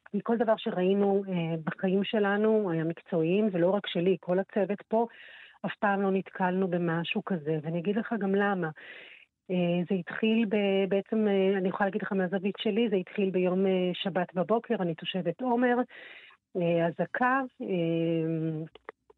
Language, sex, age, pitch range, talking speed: Hebrew, female, 40-59, 165-200 Hz, 150 wpm